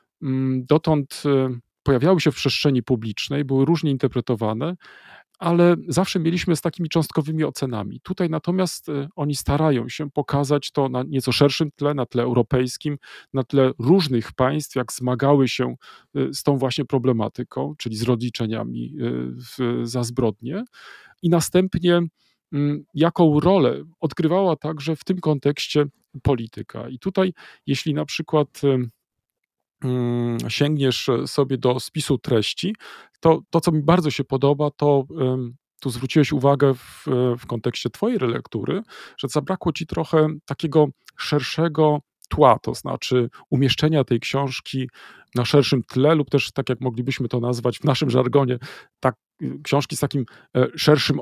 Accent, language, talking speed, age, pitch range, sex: native, Polish, 130 wpm, 40-59, 125-160 Hz, male